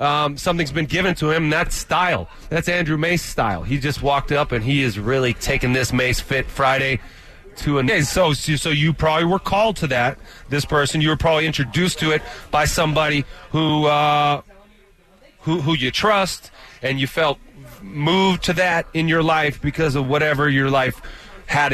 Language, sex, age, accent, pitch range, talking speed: English, male, 30-49, American, 135-165 Hz, 190 wpm